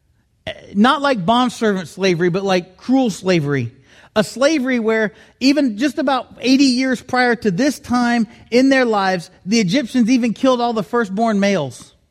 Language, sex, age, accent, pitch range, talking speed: English, male, 40-59, American, 195-265 Hz, 160 wpm